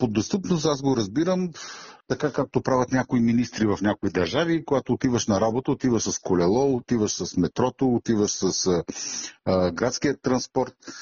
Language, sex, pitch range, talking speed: Bulgarian, male, 120-150 Hz, 155 wpm